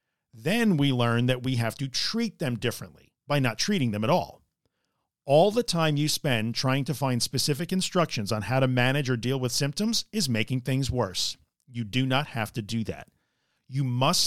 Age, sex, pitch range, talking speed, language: 50-69, male, 120-170 Hz, 200 wpm, English